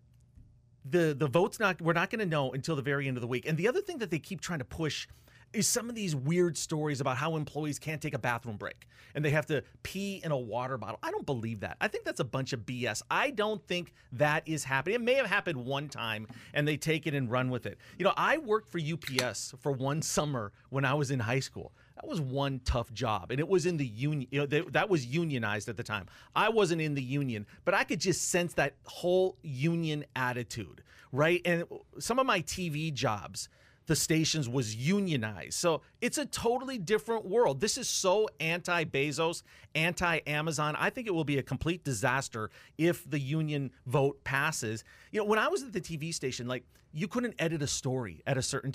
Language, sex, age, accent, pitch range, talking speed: English, male, 30-49, American, 125-170 Hz, 225 wpm